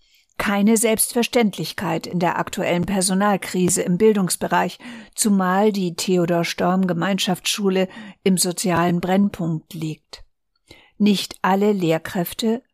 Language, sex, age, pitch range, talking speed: German, female, 50-69, 185-225 Hz, 95 wpm